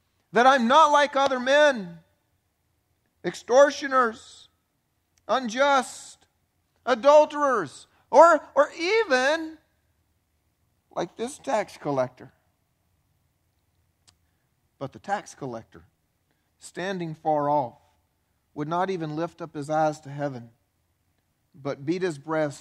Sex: male